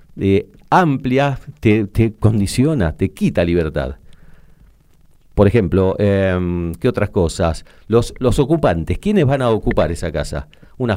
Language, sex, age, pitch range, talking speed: Spanish, male, 40-59, 90-120 Hz, 130 wpm